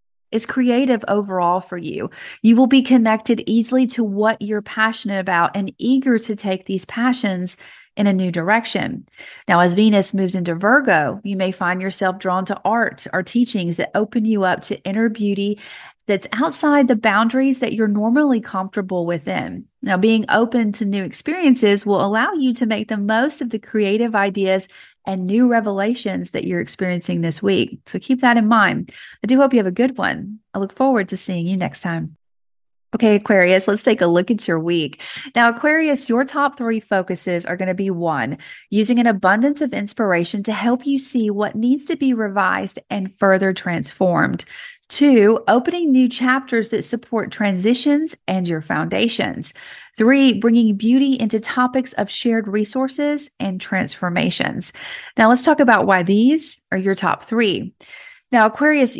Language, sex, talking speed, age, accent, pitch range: English, female, 175 wpm, 40-59, American, 190-245 Hz